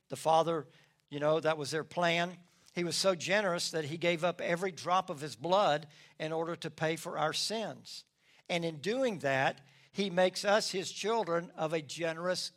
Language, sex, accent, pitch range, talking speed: English, male, American, 150-180 Hz, 190 wpm